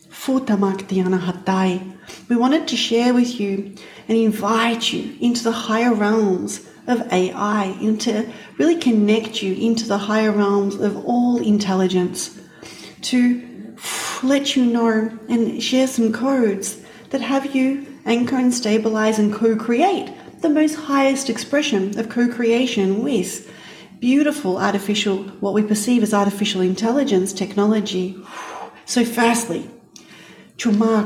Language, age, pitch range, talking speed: English, 40-59, 200-250 Hz, 120 wpm